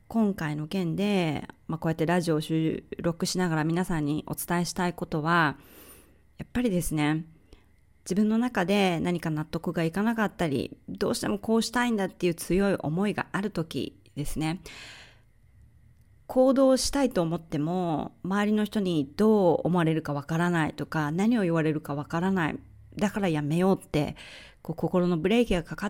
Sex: female